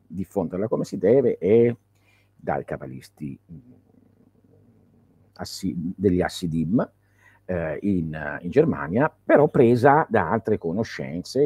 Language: Italian